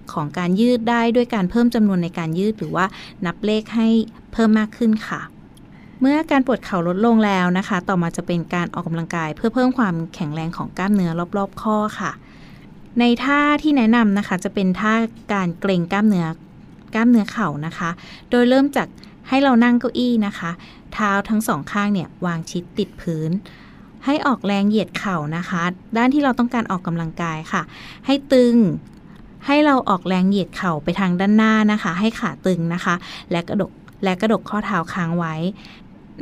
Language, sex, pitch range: Thai, female, 175-230 Hz